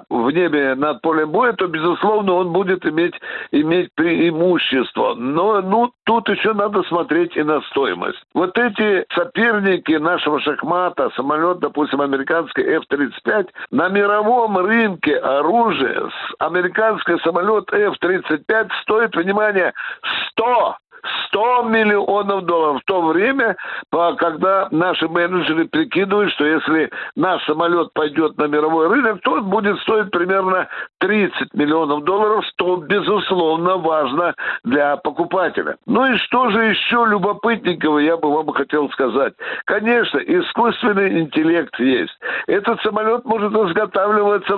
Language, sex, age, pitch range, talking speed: Russian, male, 60-79, 165-215 Hz, 120 wpm